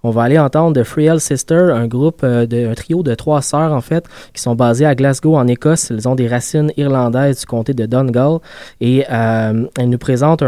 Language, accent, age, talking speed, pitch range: French, Canadian, 20-39, 220 wpm, 120-145 Hz